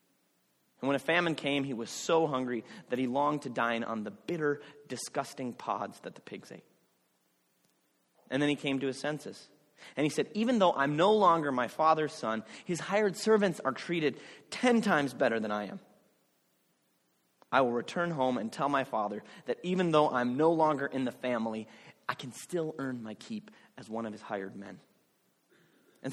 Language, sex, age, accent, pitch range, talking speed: English, male, 30-49, American, 120-165 Hz, 190 wpm